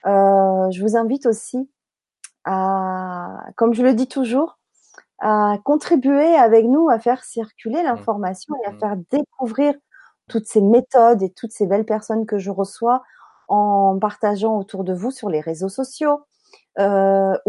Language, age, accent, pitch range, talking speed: French, 30-49, French, 200-255 Hz, 150 wpm